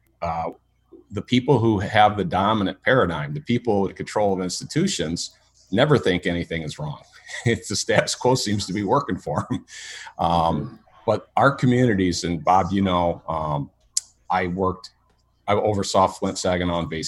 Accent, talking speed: American, 160 wpm